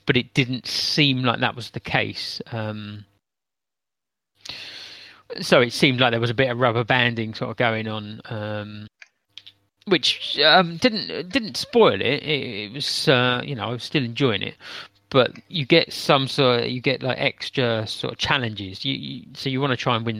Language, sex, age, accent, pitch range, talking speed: English, male, 30-49, British, 110-135 Hz, 195 wpm